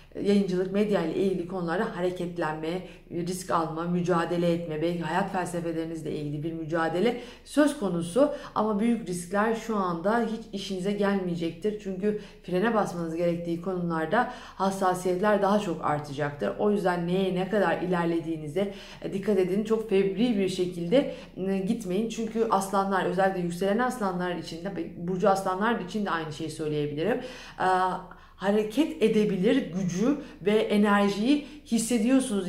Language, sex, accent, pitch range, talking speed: Turkish, female, native, 175-215 Hz, 125 wpm